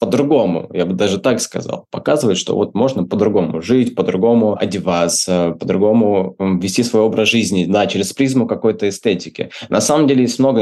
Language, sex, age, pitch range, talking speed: Russian, male, 20-39, 95-115 Hz, 170 wpm